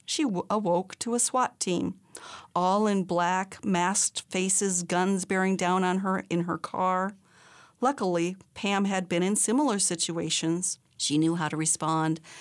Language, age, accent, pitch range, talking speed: English, 50-69, American, 175-220 Hz, 150 wpm